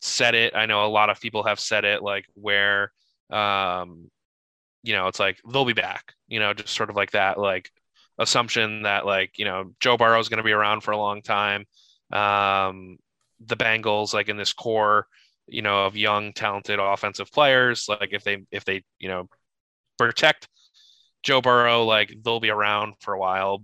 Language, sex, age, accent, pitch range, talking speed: English, male, 20-39, American, 100-115 Hz, 195 wpm